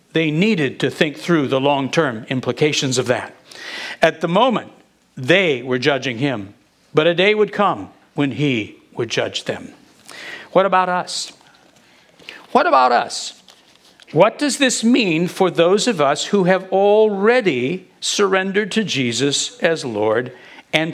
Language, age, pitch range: English, 60-79, 140-195 Hz